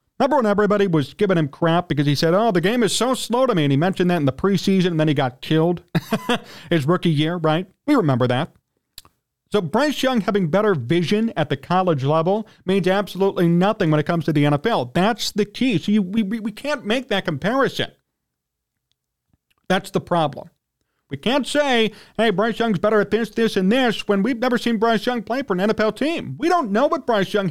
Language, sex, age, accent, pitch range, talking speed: English, male, 40-59, American, 165-230 Hz, 215 wpm